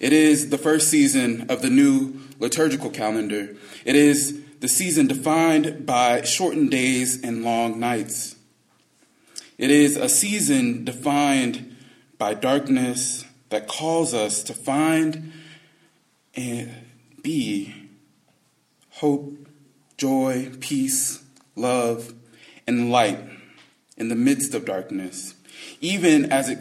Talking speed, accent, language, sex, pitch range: 110 wpm, American, English, male, 125-165 Hz